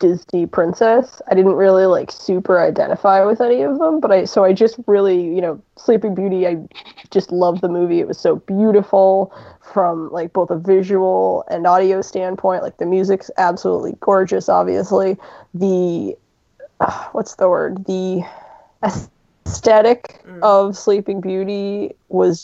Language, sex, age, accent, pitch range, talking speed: English, female, 20-39, American, 175-195 Hz, 150 wpm